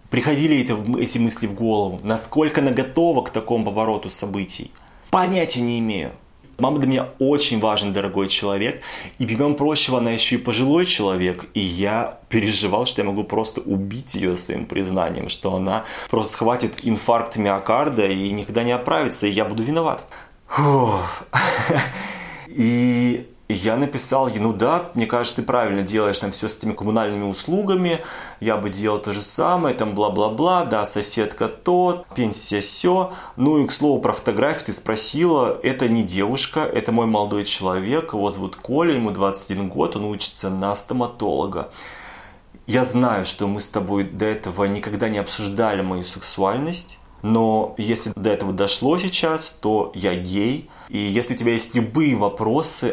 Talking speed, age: 160 wpm, 20-39